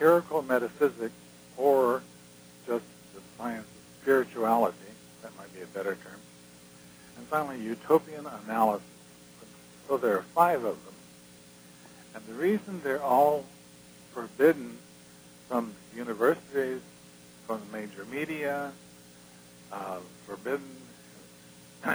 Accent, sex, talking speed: American, male, 105 wpm